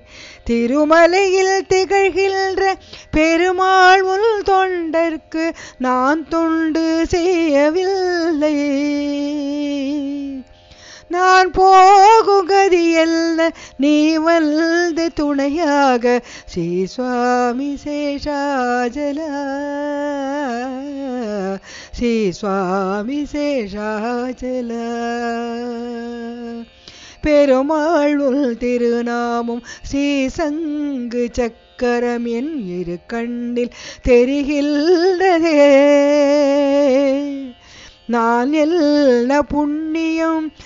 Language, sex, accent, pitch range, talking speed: Tamil, female, native, 240-320 Hz, 45 wpm